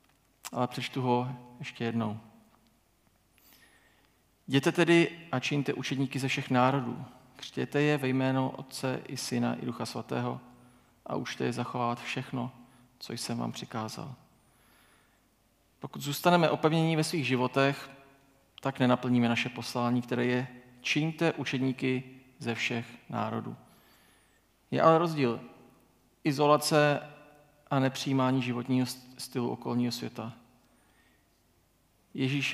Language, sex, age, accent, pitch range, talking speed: Czech, male, 40-59, native, 120-140 Hz, 110 wpm